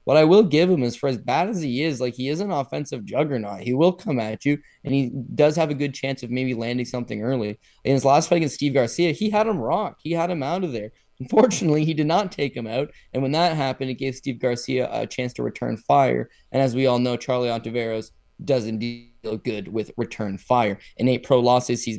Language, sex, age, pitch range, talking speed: English, male, 20-39, 120-145 Hz, 245 wpm